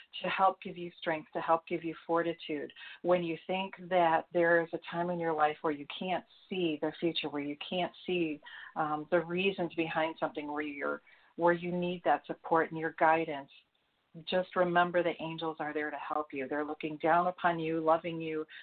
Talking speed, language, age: 205 wpm, English, 40-59